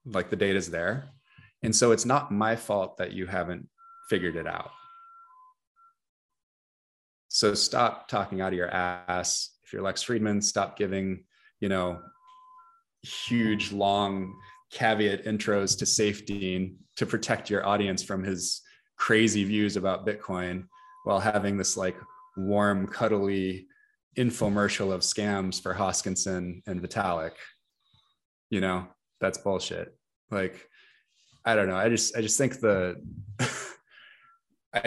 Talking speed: 130 wpm